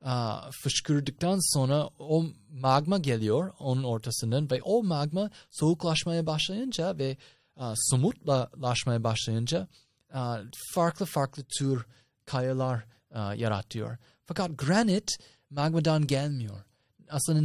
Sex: male